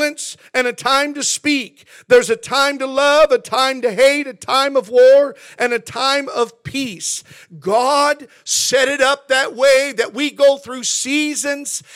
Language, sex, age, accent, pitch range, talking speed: English, male, 50-69, American, 250-290 Hz, 170 wpm